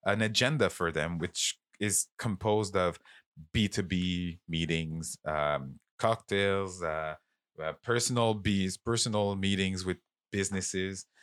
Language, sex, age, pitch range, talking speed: English, male, 30-49, 85-100 Hz, 120 wpm